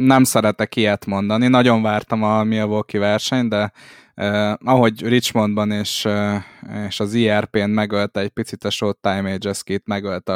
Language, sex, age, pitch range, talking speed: Hungarian, male, 20-39, 105-120 Hz, 155 wpm